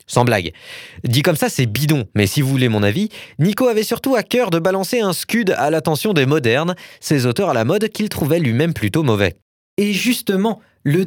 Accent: French